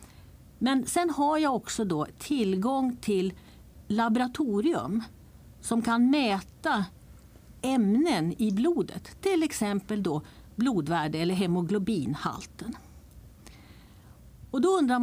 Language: Swedish